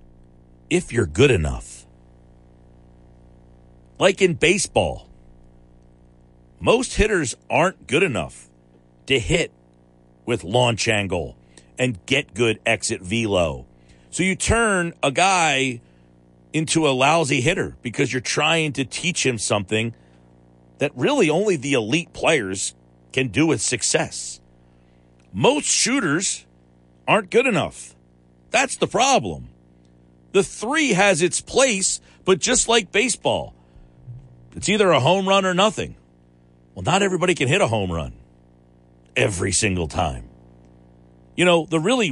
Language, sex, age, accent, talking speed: English, male, 50-69, American, 125 wpm